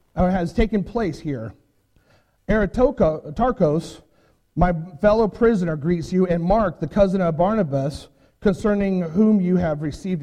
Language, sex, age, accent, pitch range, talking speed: English, male, 40-59, American, 155-205 Hz, 125 wpm